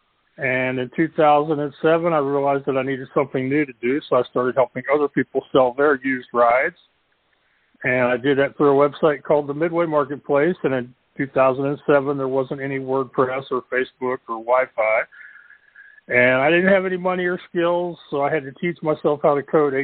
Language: English